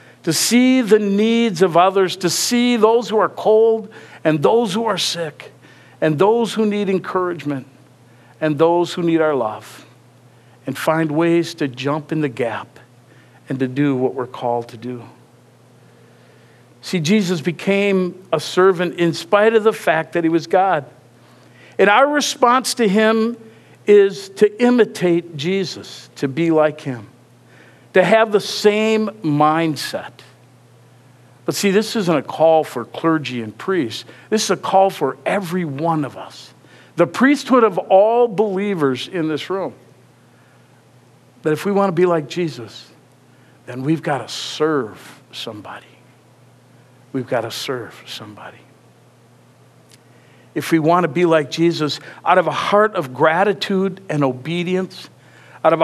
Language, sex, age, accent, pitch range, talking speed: English, male, 50-69, American, 145-205 Hz, 150 wpm